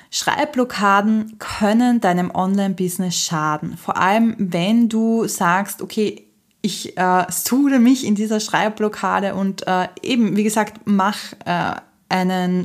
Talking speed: 125 wpm